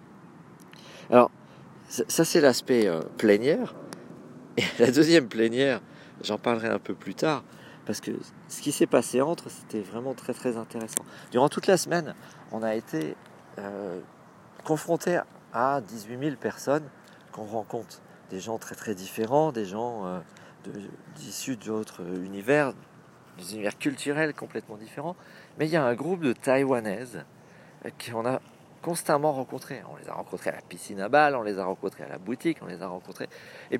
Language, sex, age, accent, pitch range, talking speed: French, male, 50-69, French, 110-160 Hz, 170 wpm